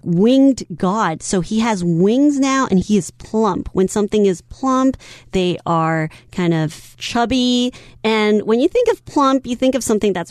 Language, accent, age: Chinese, American, 30-49